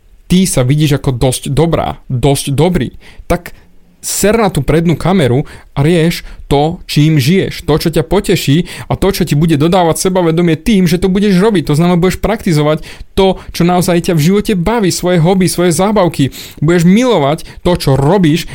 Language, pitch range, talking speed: Slovak, 135-190 Hz, 180 wpm